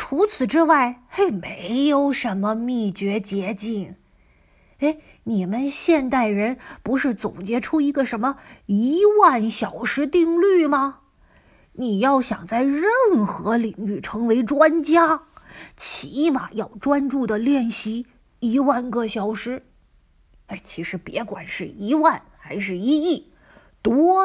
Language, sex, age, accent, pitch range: Chinese, female, 20-39, native, 205-280 Hz